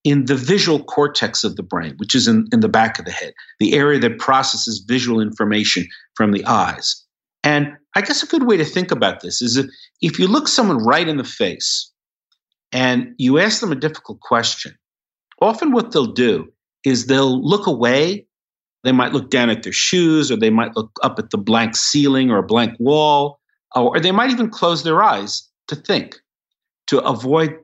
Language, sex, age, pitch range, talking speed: English, male, 50-69, 125-180 Hz, 200 wpm